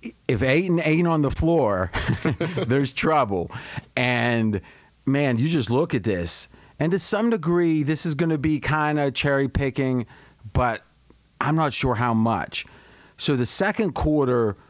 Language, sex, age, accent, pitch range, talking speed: English, male, 30-49, American, 125-145 Hz, 150 wpm